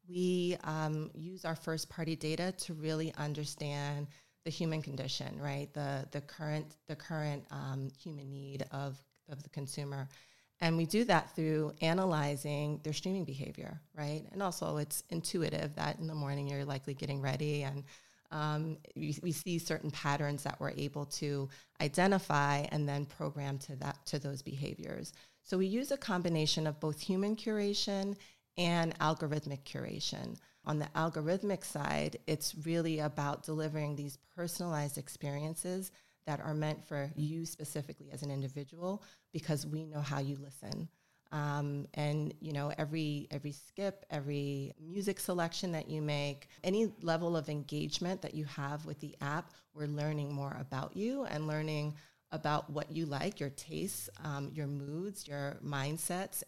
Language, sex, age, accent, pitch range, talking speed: English, female, 30-49, American, 145-165 Hz, 155 wpm